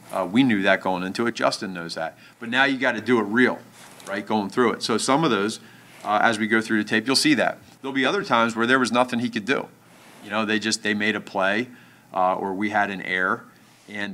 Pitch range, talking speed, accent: 100-115 Hz, 270 wpm, American